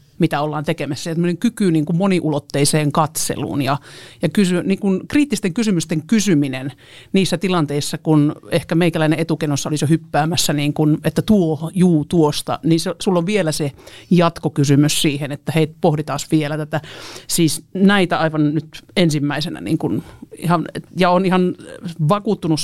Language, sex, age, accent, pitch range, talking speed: Finnish, male, 50-69, native, 150-175 Hz, 140 wpm